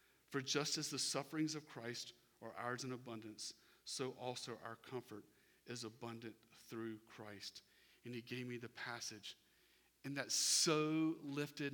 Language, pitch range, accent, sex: English, 125-200 Hz, American, male